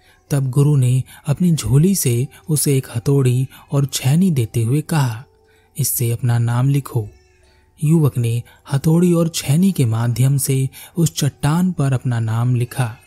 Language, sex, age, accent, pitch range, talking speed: Hindi, male, 30-49, native, 120-150 Hz, 145 wpm